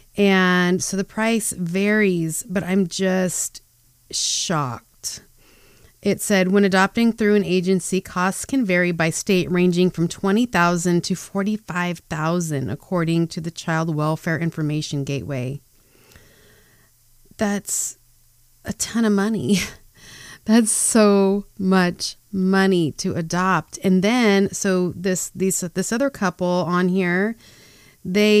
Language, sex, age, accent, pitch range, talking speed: English, female, 30-49, American, 165-200 Hz, 115 wpm